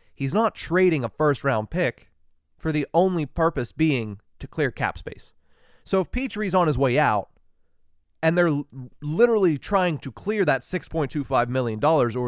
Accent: American